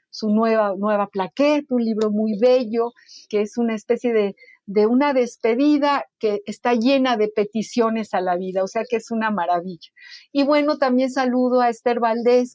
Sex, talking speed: female, 175 wpm